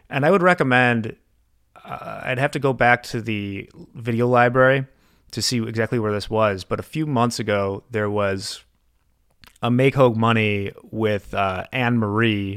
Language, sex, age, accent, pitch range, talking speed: English, male, 30-49, American, 100-125 Hz, 165 wpm